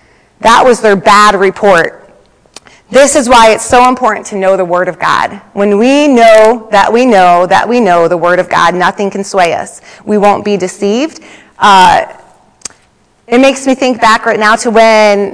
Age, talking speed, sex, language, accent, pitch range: 30-49, 190 wpm, female, English, American, 200-270 Hz